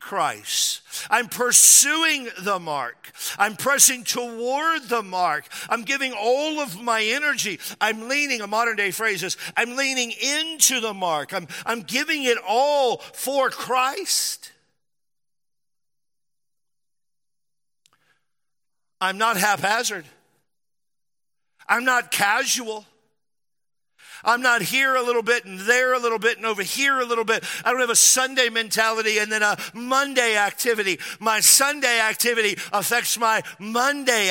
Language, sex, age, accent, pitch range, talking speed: English, male, 50-69, American, 205-255 Hz, 125 wpm